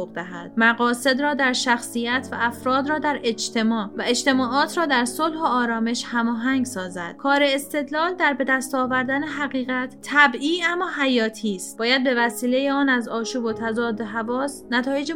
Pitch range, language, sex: 235-285 Hz, Persian, female